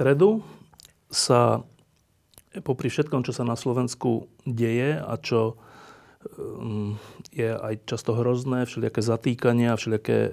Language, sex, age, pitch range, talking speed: Slovak, male, 30-49, 115-135 Hz, 115 wpm